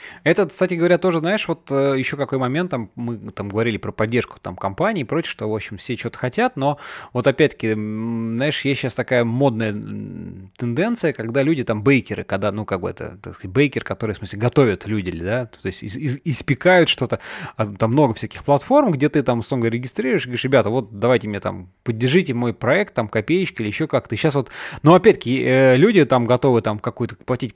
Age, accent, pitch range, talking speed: 20-39, native, 115-150 Hz, 200 wpm